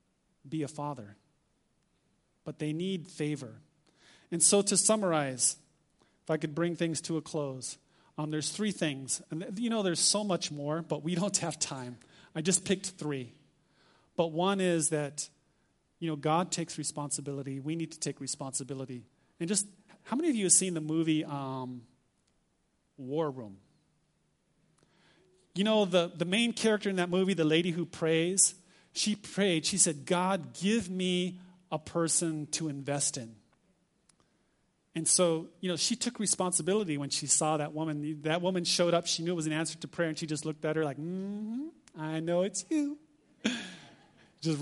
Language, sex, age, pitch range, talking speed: English, male, 30-49, 150-185 Hz, 170 wpm